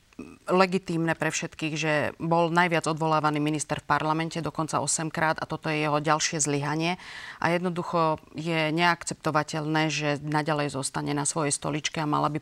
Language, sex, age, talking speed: Slovak, female, 30-49, 155 wpm